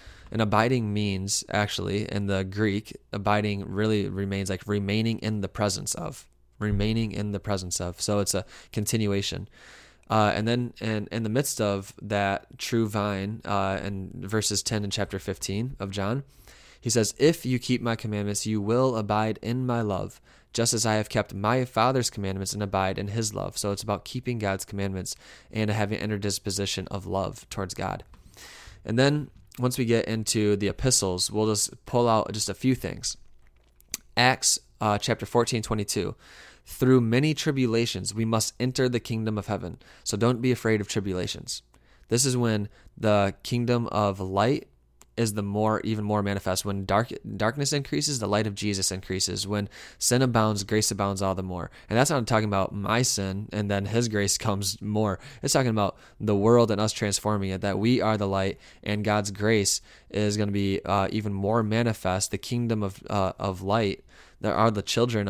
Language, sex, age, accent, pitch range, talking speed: English, male, 20-39, American, 100-115 Hz, 185 wpm